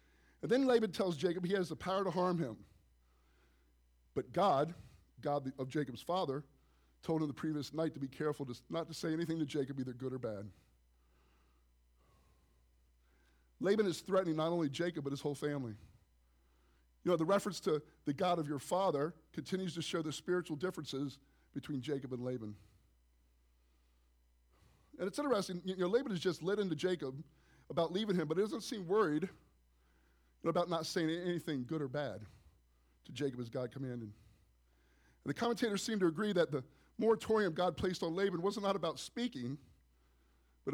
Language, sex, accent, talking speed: English, male, American, 170 wpm